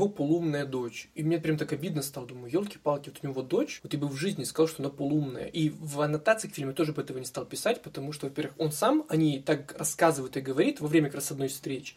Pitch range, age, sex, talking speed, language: 140-175 Hz, 20-39, male, 240 wpm, Russian